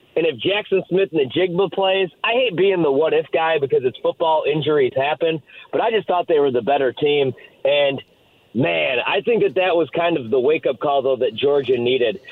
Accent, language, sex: American, English, male